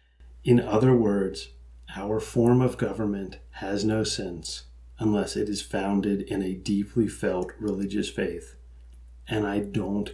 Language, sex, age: English, male, 40-59